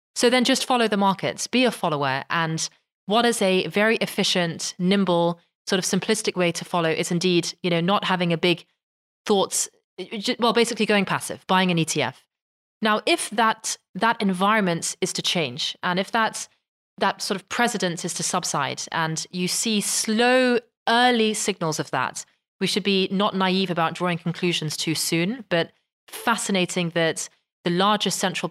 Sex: female